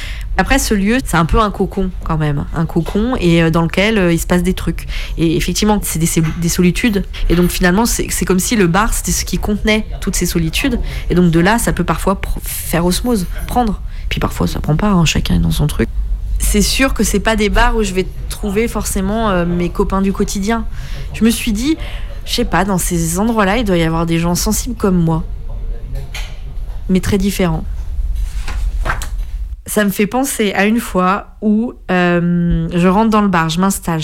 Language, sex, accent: French, female, French